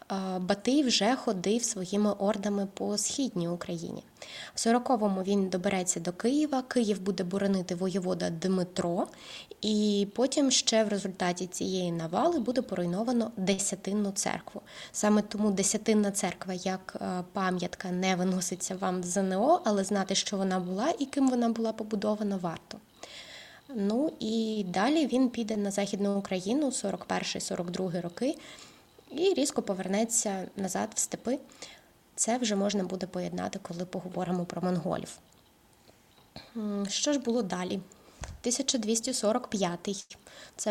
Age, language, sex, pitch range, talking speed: 20-39, Ukrainian, female, 190-235 Hz, 125 wpm